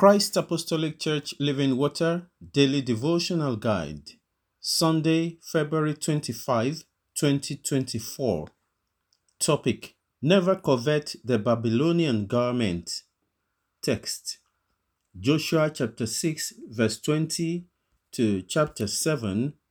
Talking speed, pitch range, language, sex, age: 80 wpm, 115-165 Hz, English, male, 50-69